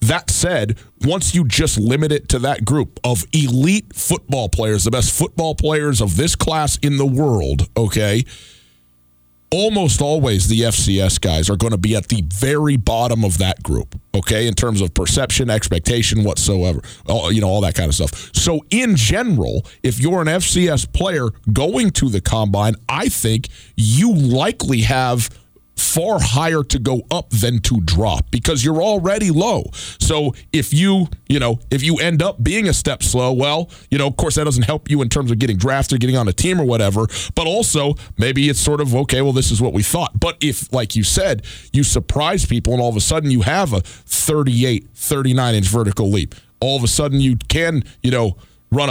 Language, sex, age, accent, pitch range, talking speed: English, male, 40-59, American, 105-145 Hz, 195 wpm